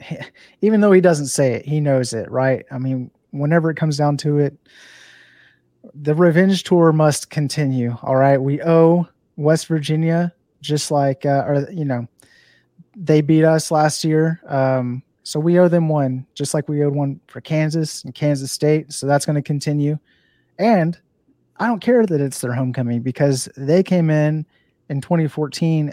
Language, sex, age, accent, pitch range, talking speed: English, male, 30-49, American, 130-160 Hz, 175 wpm